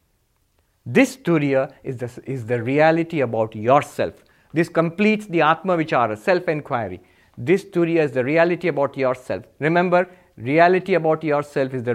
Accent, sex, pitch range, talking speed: Indian, male, 125-200 Hz, 155 wpm